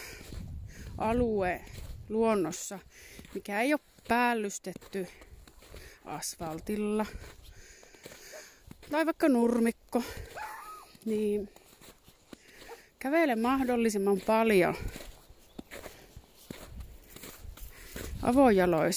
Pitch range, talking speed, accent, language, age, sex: 200-255 Hz, 45 wpm, native, Finnish, 30-49, female